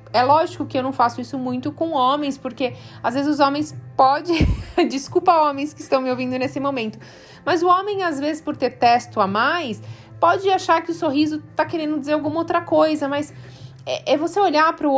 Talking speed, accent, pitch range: 210 wpm, Brazilian, 185-295 Hz